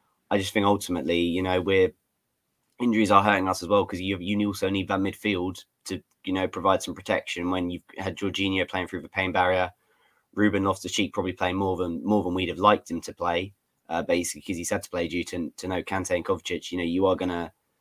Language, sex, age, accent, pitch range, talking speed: English, male, 20-39, British, 85-95 Hz, 235 wpm